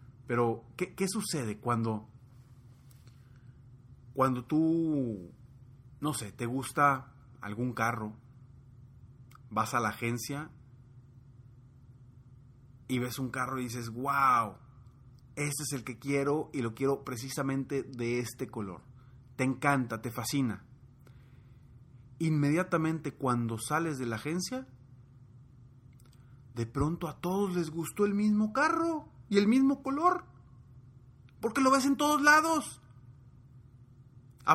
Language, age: Spanish, 30-49